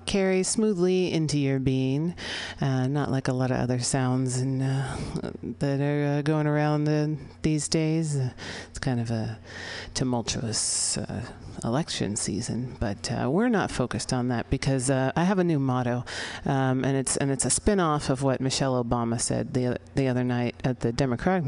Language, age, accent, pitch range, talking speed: English, 40-59, American, 125-155 Hz, 180 wpm